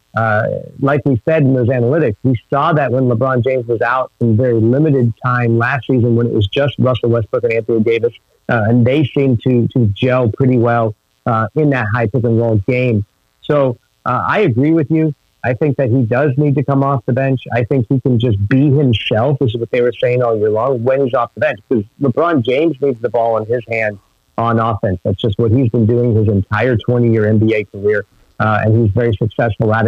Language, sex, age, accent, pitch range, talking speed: English, male, 40-59, American, 110-135 Hz, 230 wpm